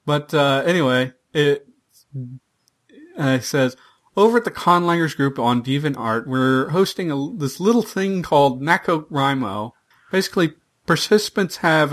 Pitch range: 130-160 Hz